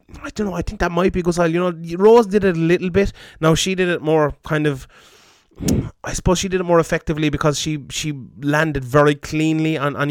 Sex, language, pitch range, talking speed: male, English, 140-165 Hz, 225 wpm